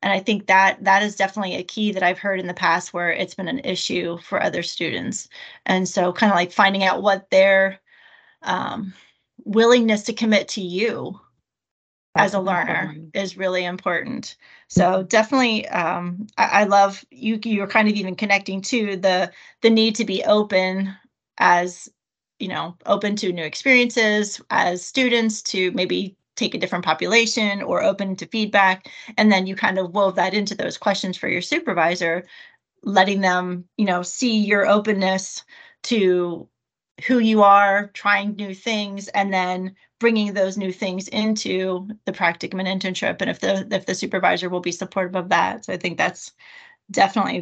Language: English